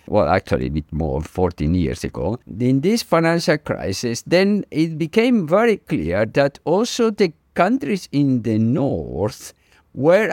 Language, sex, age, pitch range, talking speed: English, male, 50-69, 105-155 Hz, 145 wpm